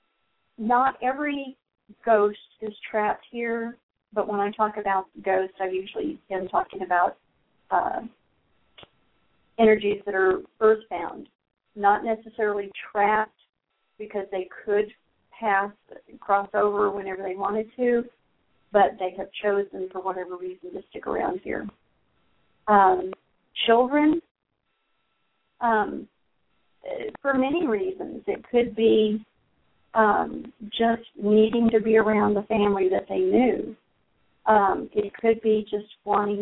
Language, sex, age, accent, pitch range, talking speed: English, female, 40-59, American, 205-235 Hz, 115 wpm